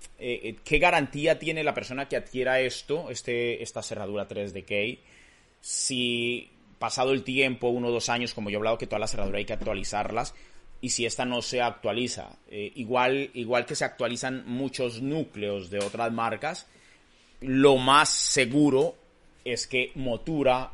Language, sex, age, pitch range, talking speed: Spanish, male, 30-49, 105-135 Hz, 160 wpm